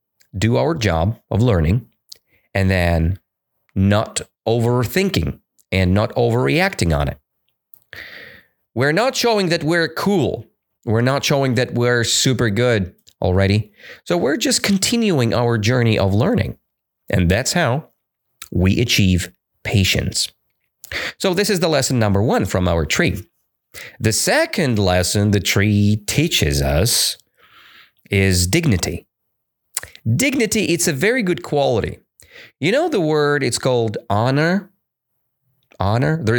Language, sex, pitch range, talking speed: English, male, 100-145 Hz, 125 wpm